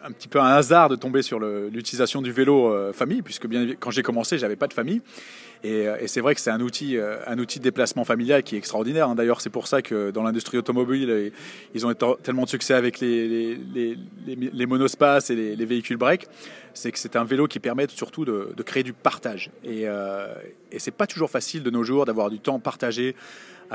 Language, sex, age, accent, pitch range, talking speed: French, male, 30-49, French, 115-135 Hz, 225 wpm